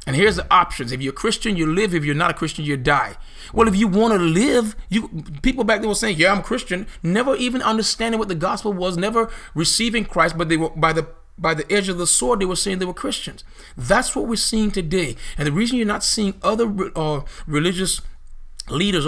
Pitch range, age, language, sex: 150-210 Hz, 40-59, English, male